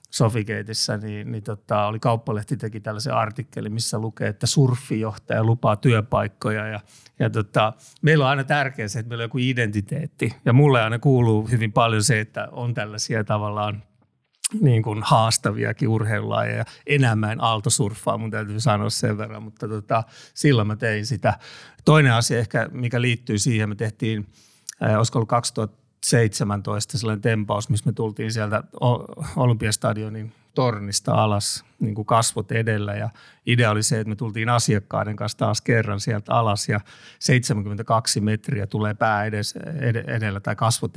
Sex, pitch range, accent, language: male, 105-125 Hz, native, Finnish